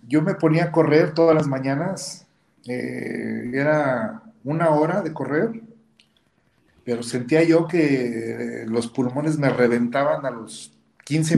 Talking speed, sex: 130 wpm, male